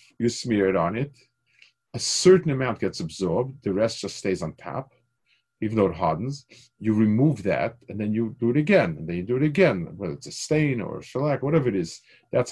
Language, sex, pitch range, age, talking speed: English, male, 105-135 Hz, 50-69, 220 wpm